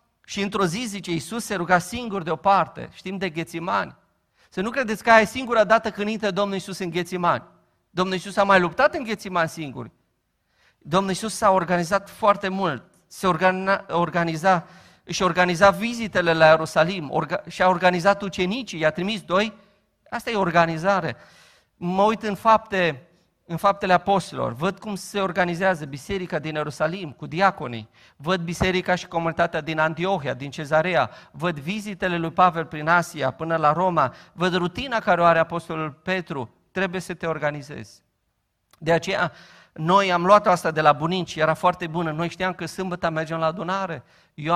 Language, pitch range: Romanian, 160-195 Hz